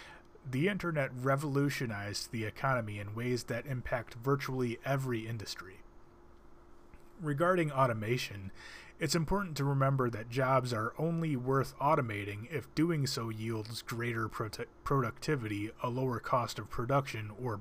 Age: 30-49